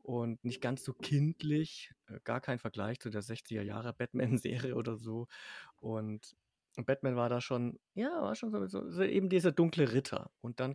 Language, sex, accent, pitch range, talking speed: German, male, German, 115-145 Hz, 160 wpm